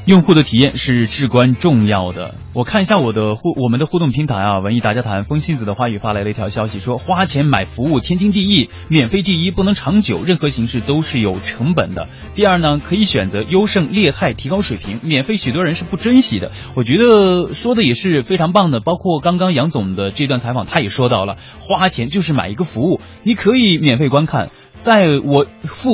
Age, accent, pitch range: 20-39, native, 110-170 Hz